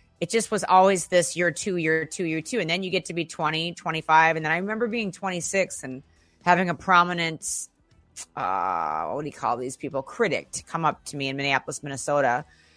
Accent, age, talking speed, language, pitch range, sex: American, 30-49, 210 wpm, English, 145-185 Hz, female